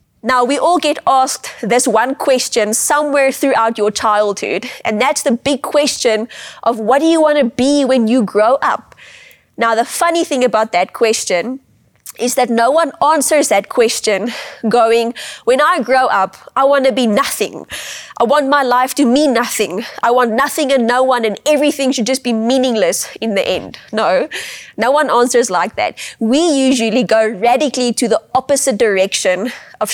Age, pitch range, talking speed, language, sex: 20-39, 225-275 Hz, 175 wpm, English, female